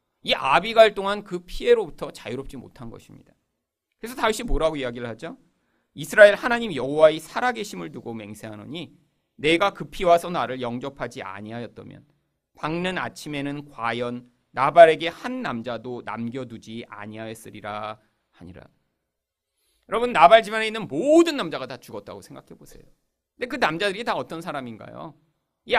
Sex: male